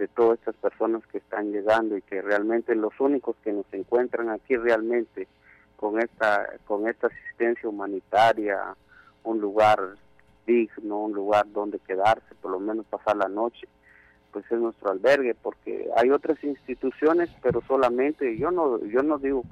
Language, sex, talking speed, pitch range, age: Spanish, male, 155 wpm, 105-120 Hz, 50-69